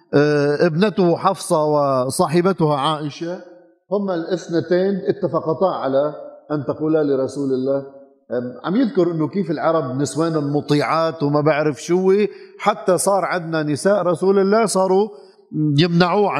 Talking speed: 110 wpm